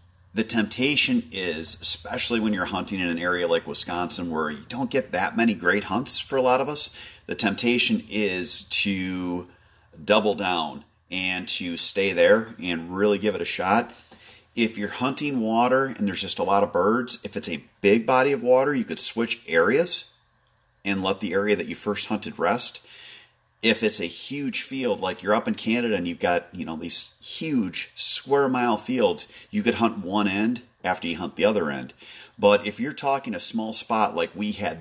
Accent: American